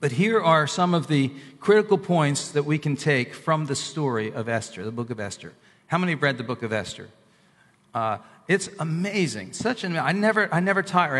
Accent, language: American, English